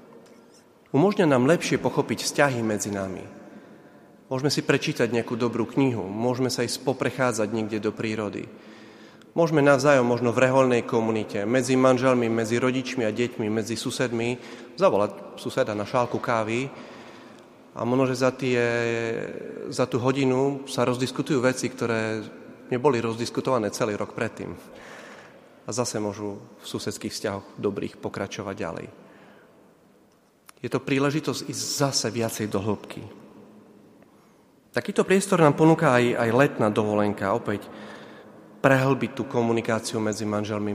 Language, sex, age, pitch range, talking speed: Slovak, male, 30-49, 105-130 Hz, 125 wpm